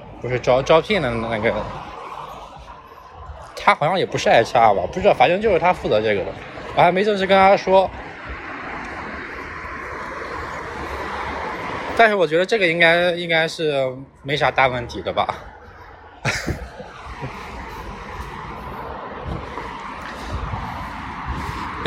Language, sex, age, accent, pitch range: Chinese, male, 20-39, native, 135-205 Hz